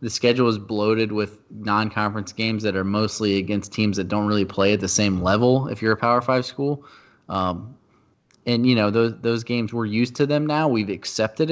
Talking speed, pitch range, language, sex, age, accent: 210 wpm, 100-125 Hz, English, male, 20-39, American